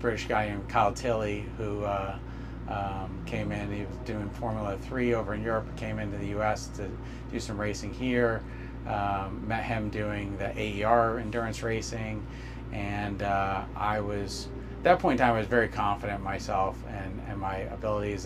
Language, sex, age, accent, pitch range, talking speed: English, male, 30-49, American, 100-120 Hz, 180 wpm